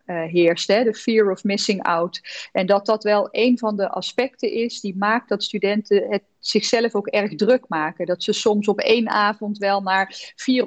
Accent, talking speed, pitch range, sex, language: Dutch, 195 wpm, 195-235 Hz, female, Dutch